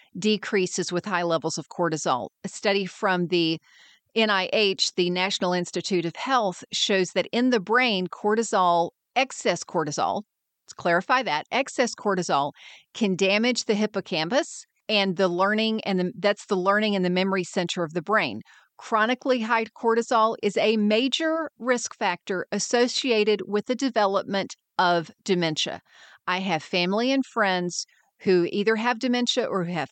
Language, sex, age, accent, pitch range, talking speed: English, female, 40-59, American, 185-230 Hz, 150 wpm